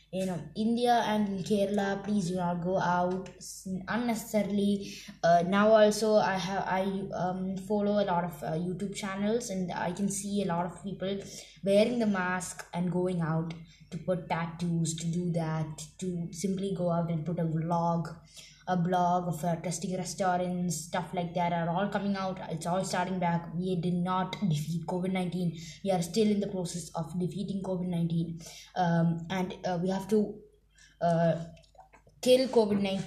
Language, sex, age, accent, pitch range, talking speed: Malayalam, female, 20-39, native, 175-205 Hz, 165 wpm